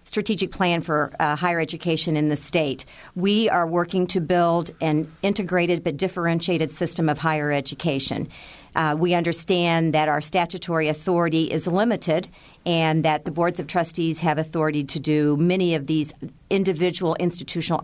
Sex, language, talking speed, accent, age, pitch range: female, English, 155 wpm, American, 50-69, 150-175 Hz